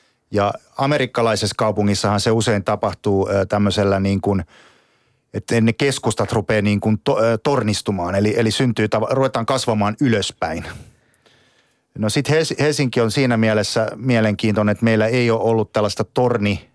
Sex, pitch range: male, 100-120 Hz